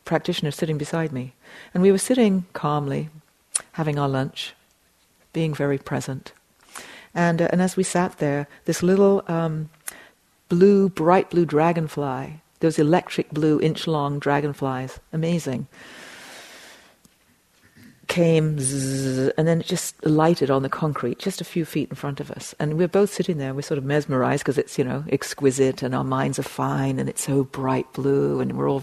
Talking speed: 165 wpm